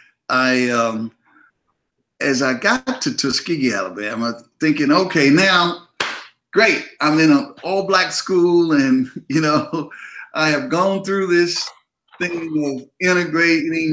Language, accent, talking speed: English, American, 120 wpm